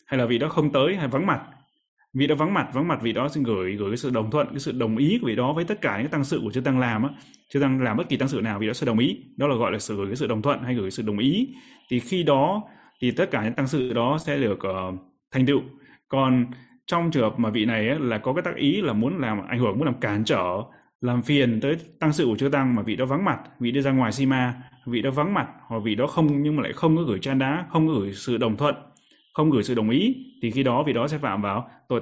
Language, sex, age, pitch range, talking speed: Vietnamese, male, 20-39, 115-145 Hz, 305 wpm